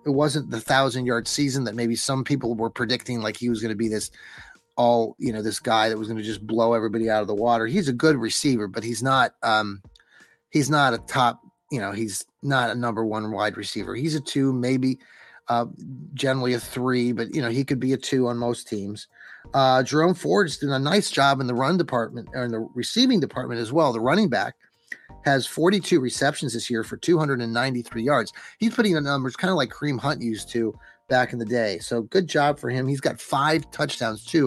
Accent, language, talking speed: American, English, 225 wpm